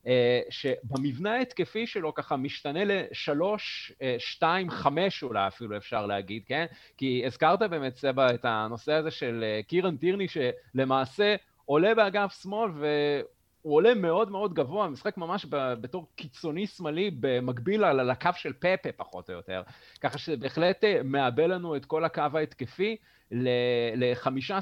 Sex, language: male, Hebrew